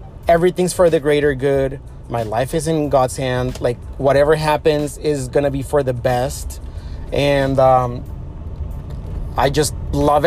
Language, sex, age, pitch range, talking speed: English, male, 30-49, 120-160 Hz, 150 wpm